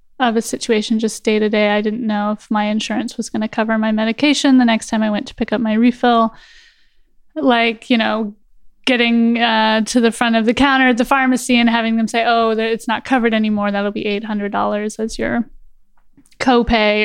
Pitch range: 225-260 Hz